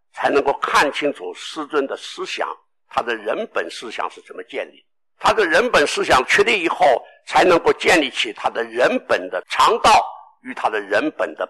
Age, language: 60-79, Chinese